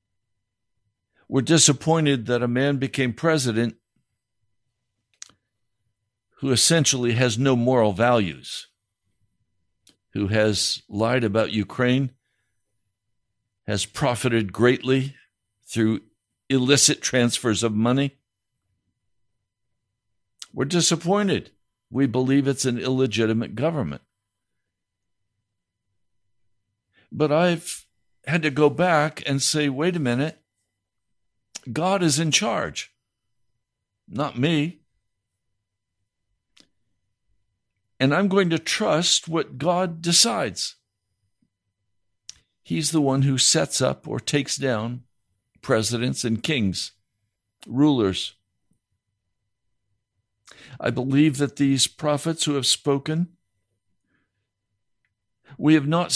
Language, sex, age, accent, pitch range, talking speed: English, male, 60-79, American, 100-140 Hz, 90 wpm